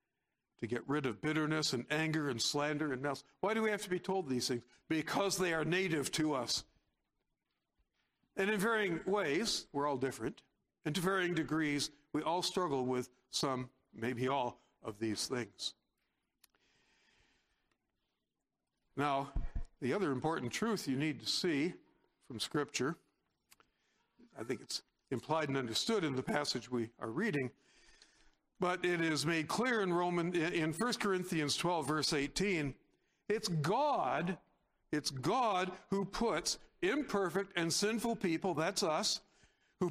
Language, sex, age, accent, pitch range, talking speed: English, male, 60-79, American, 140-190 Hz, 145 wpm